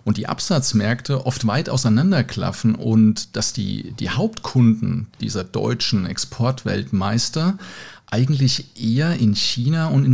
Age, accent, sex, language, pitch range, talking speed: 40-59, German, male, German, 115-140 Hz, 120 wpm